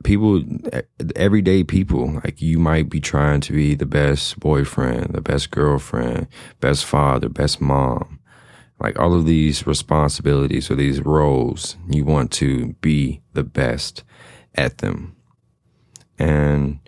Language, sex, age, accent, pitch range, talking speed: English, male, 30-49, American, 70-90 Hz, 130 wpm